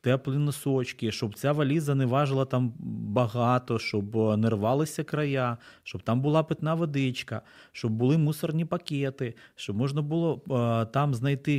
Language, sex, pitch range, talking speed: Ukrainian, male, 115-155 Hz, 140 wpm